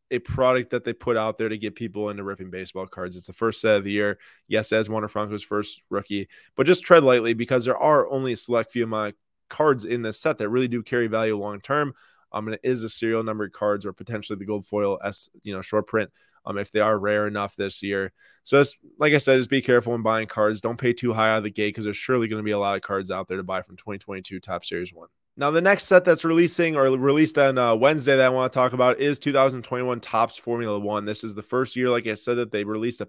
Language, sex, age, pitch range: English, male, 20-39, 105-130 Hz